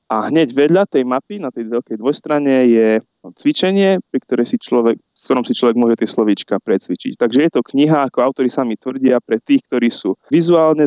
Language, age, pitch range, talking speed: Slovak, 20-39, 115-135 Hz, 195 wpm